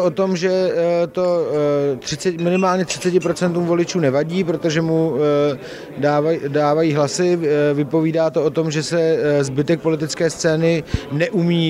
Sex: male